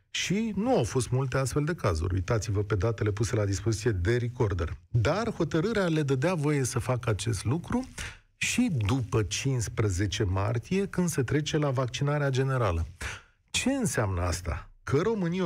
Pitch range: 110-160 Hz